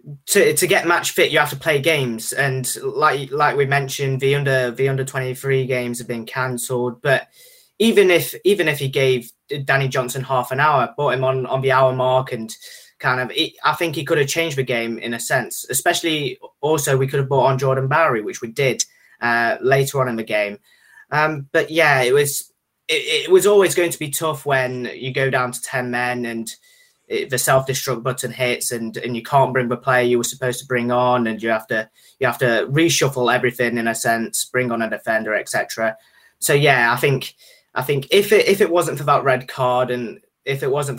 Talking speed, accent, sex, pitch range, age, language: 220 wpm, British, male, 120-145 Hz, 20-39, English